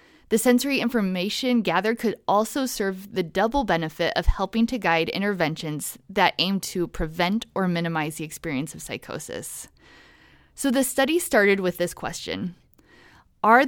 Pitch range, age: 175-230 Hz, 20-39